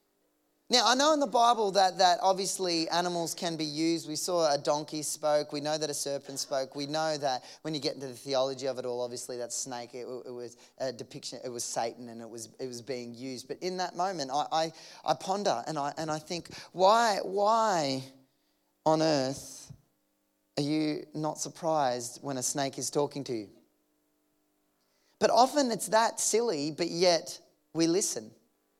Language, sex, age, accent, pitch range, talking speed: English, male, 20-39, Australian, 155-225 Hz, 190 wpm